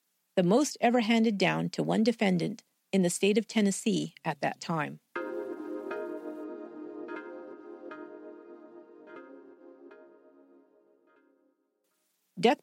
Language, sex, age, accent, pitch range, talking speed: English, female, 50-69, American, 180-240 Hz, 80 wpm